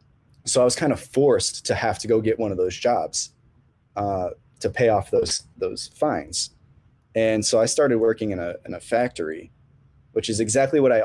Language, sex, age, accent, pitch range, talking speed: English, male, 20-39, American, 95-120 Hz, 200 wpm